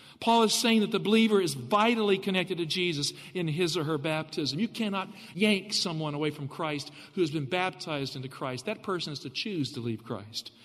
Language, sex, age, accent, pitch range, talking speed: English, male, 50-69, American, 160-230 Hz, 210 wpm